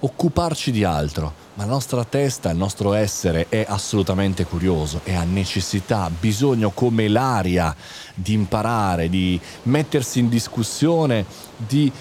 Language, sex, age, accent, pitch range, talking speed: Italian, male, 30-49, native, 100-145 Hz, 135 wpm